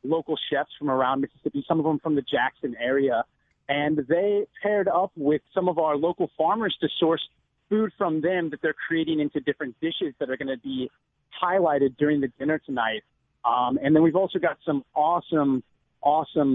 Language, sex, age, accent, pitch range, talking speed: English, male, 30-49, American, 135-160 Hz, 190 wpm